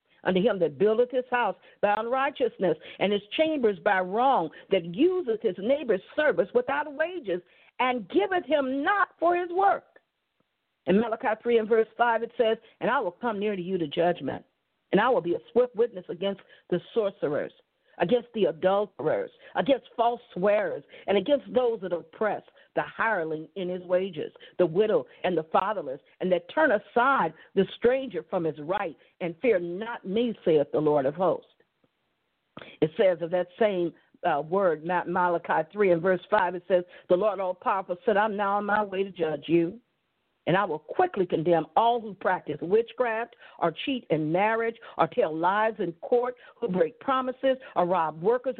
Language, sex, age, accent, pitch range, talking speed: English, female, 50-69, American, 180-260 Hz, 175 wpm